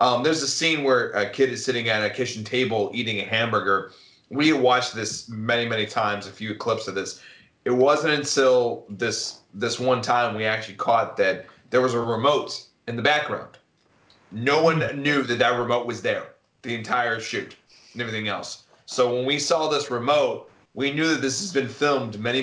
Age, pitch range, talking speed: 30-49, 115-135 Hz, 195 wpm